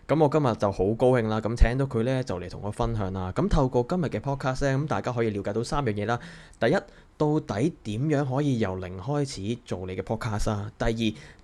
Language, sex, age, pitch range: Chinese, male, 20-39, 105-130 Hz